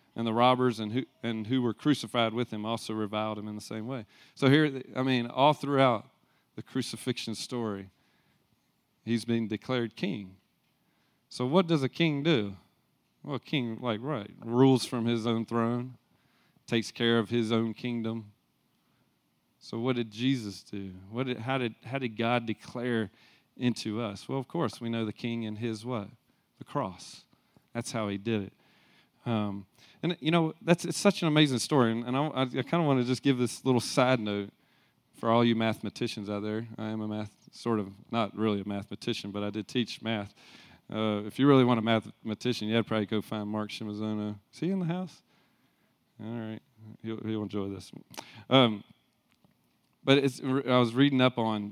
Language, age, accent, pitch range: English, 30-49, American, 110-130 Hz